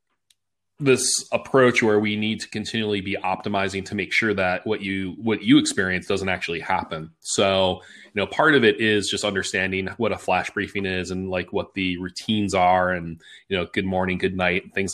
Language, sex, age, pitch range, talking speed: English, male, 20-39, 90-105 Hz, 200 wpm